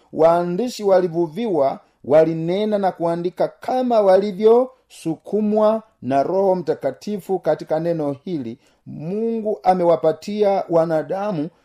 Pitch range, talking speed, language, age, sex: 145-190 Hz, 80 wpm, Swahili, 50-69, male